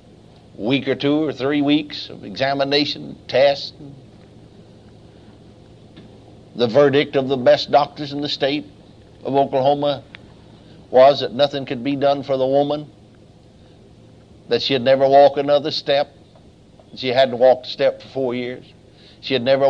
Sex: male